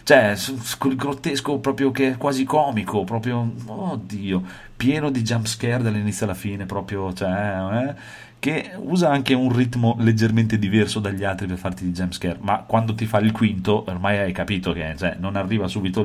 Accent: native